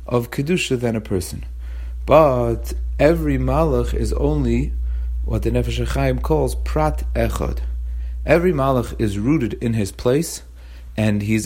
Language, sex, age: English, male, 40-59